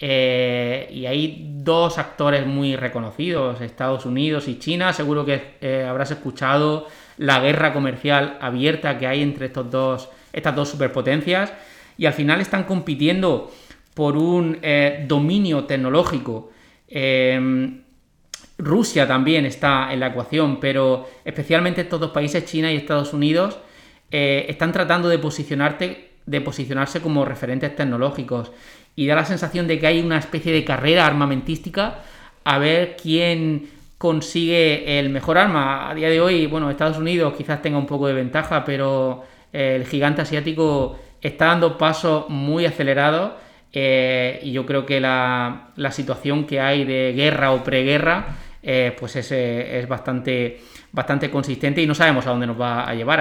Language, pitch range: Spanish, 130-160 Hz